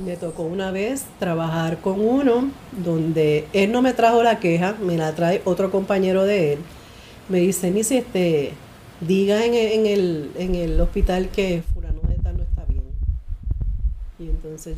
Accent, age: American, 40-59